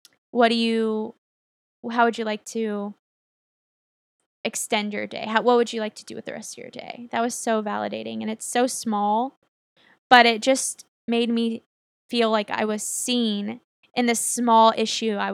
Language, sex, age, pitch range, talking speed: English, female, 10-29, 210-235 Hz, 180 wpm